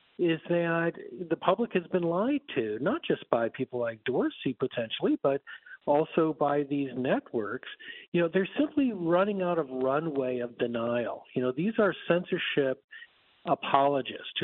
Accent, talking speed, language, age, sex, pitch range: American, 150 wpm, English, 50-69, male, 135-185 Hz